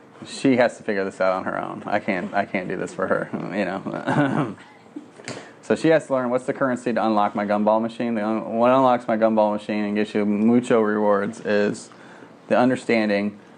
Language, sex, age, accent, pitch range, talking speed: English, male, 30-49, American, 100-110 Hz, 200 wpm